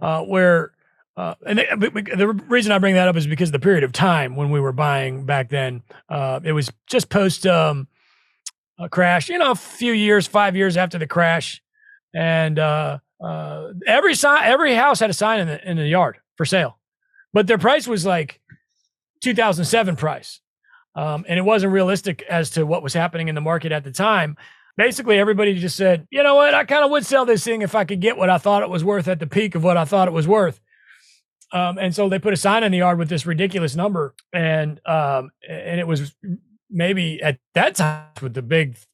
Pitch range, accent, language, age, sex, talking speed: 150-205 Hz, American, English, 40-59, male, 220 wpm